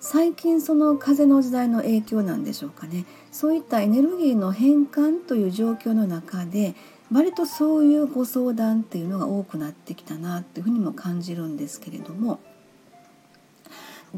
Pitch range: 195-285 Hz